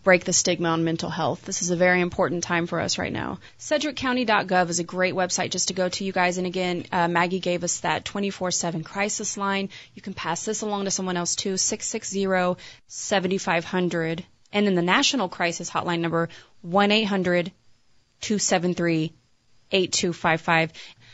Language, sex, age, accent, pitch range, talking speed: English, female, 20-39, American, 180-220 Hz, 155 wpm